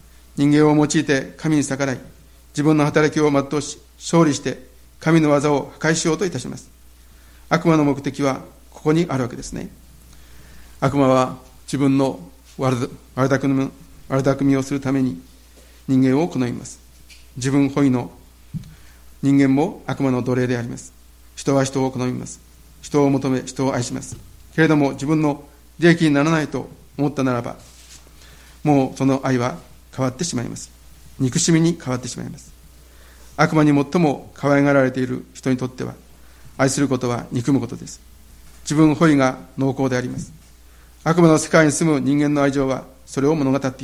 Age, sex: 60-79, male